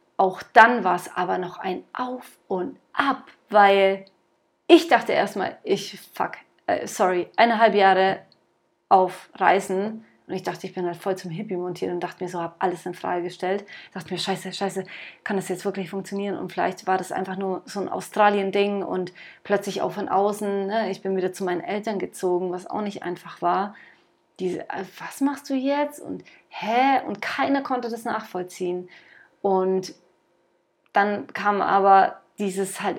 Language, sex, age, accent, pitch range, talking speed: German, female, 30-49, German, 180-220 Hz, 175 wpm